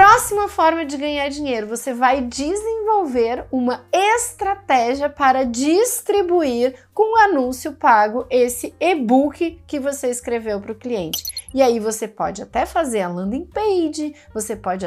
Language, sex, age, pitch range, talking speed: Portuguese, female, 30-49, 225-310 Hz, 140 wpm